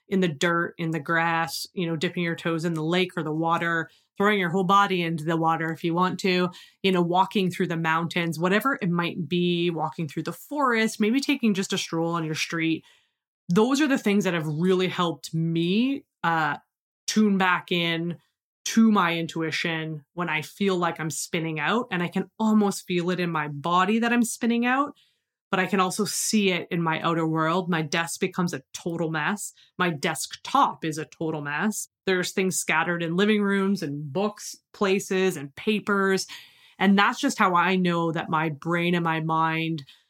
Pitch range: 165-195 Hz